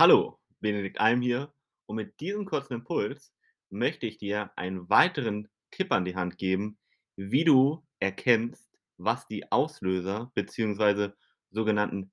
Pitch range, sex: 100-130 Hz, male